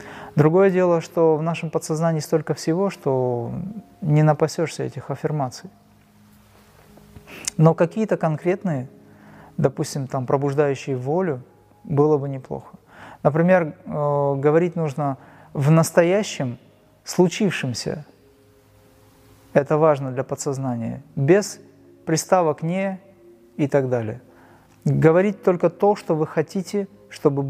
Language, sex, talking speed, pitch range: Russian, male, 100 wpm, 140-175 Hz